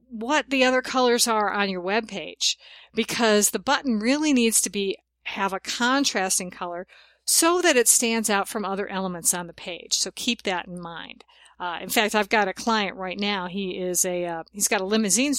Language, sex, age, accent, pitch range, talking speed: English, female, 50-69, American, 185-230 Hz, 205 wpm